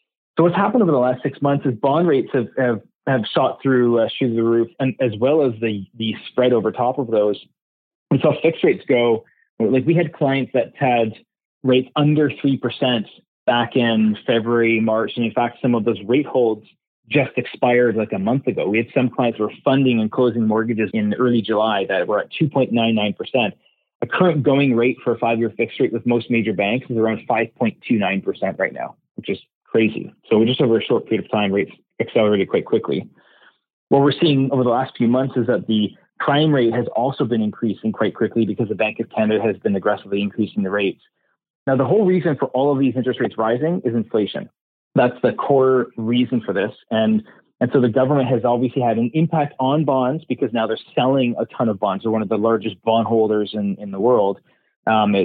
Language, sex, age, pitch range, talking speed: English, male, 30-49, 110-135 Hz, 210 wpm